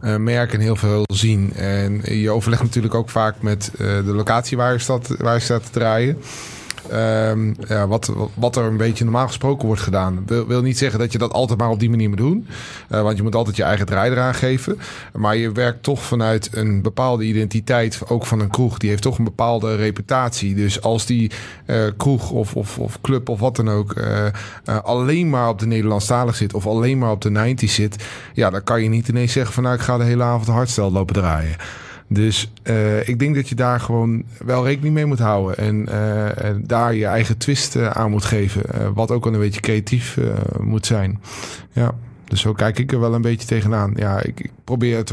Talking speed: 225 wpm